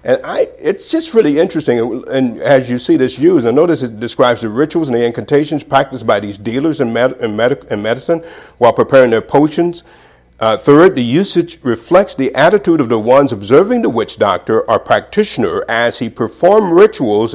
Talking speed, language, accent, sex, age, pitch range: 190 wpm, English, American, male, 50-69, 105-145 Hz